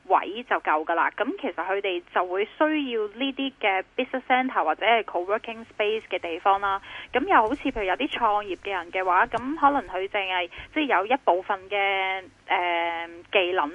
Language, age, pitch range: Chinese, 10-29, 185-250 Hz